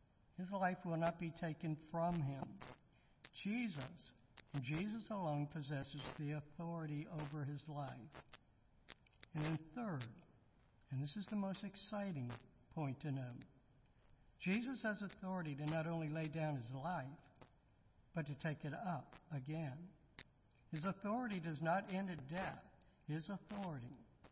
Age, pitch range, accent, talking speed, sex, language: 60-79, 135-175 Hz, American, 135 wpm, male, English